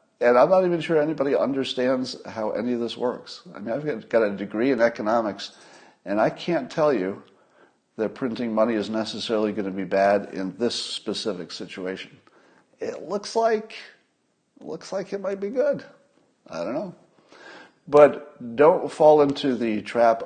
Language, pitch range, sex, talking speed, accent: English, 100-140 Hz, male, 165 wpm, American